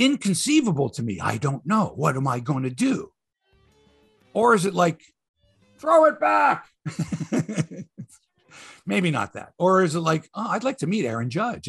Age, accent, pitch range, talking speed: 50-69, American, 125-205 Hz, 165 wpm